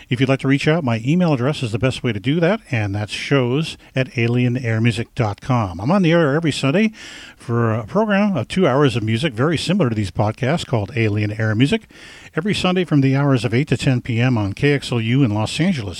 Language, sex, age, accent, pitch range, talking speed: English, male, 50-69, American, 115-155 Hz, 220 wpm